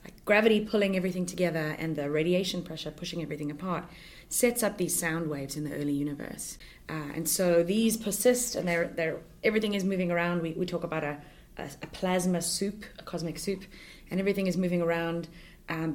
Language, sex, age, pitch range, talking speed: English, female, 20-39, 165-200 Hz, 190 wpm